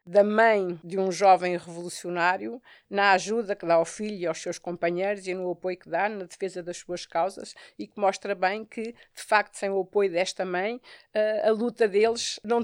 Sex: female